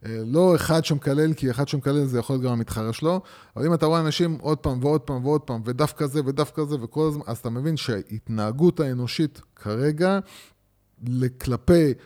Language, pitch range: Hebrew, 115-160 Hz